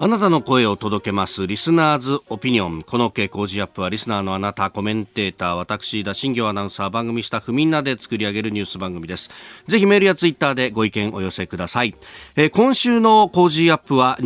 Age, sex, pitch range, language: 40-59, male, 110-165 Hz, Japanese